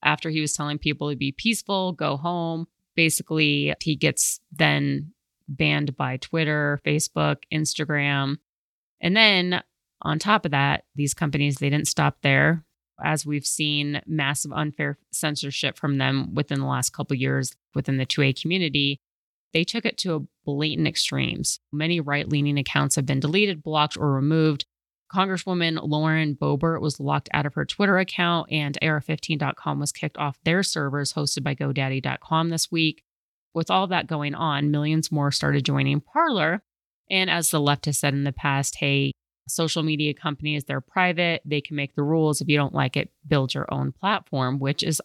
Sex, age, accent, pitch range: female, 30-49, American, 140-160 Hz